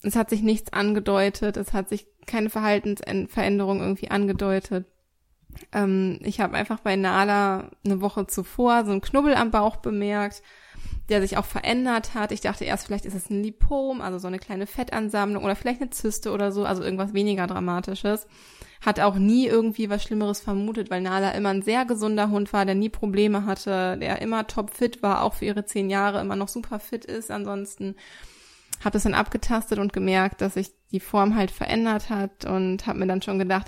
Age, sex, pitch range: 20-39, female, 195-220 Hz